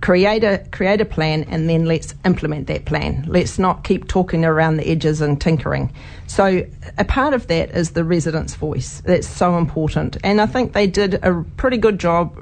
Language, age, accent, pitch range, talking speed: English, 40-59, Australian, 145-180 Hz, 200 wpm